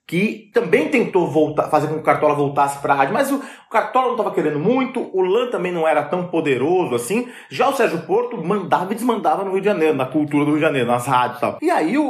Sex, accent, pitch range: male, Brazilian, 145-210 Hz